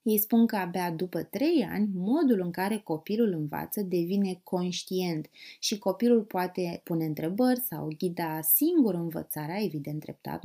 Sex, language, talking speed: female, Romanian, 145 wpm